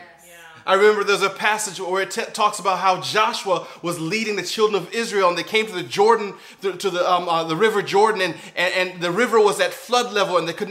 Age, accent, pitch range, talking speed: 30-49, American, 190-235 Hz, 240 wpm